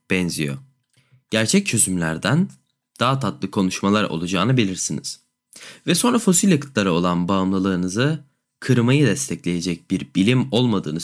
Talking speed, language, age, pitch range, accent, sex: 105 wpm, Turkish, 20-39, 90-130 Hz, native, male